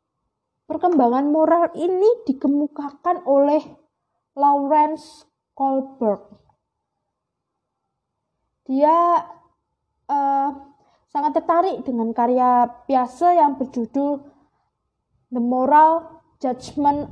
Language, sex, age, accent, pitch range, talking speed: Indonesian, female, 20-39, native, 255-320 Hz, 65 wpm